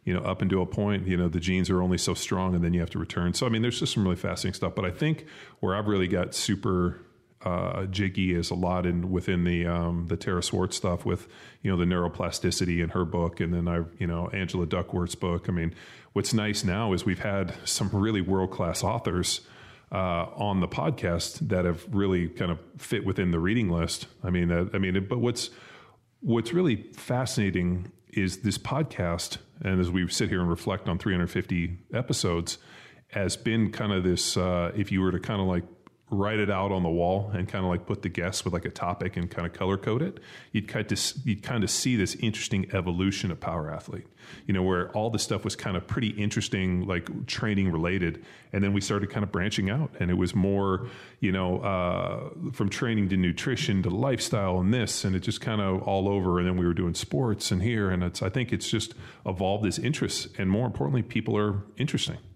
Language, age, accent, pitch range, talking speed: English, 30-49, American, 90-110 Hz, 225 wpm